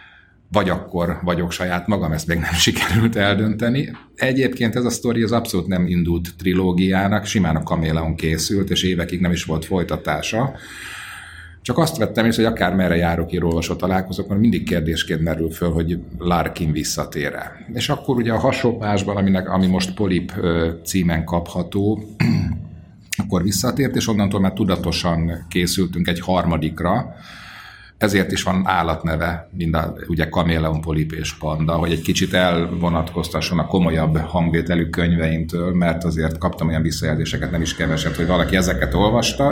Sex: male